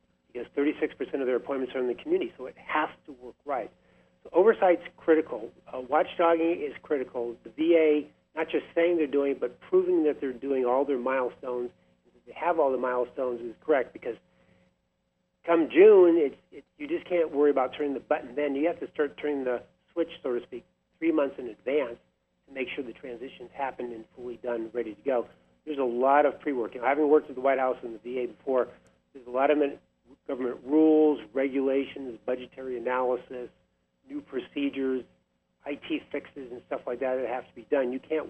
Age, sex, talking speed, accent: 50-69, male, 200 wpm, American